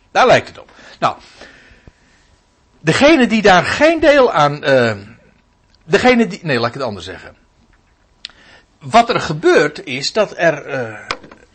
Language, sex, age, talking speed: Dutch, male, 60-79, 135 wpm